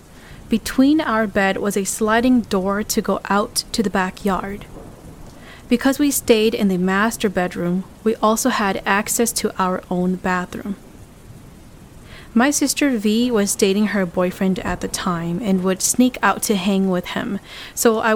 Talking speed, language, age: 160 wpm, English, 30-49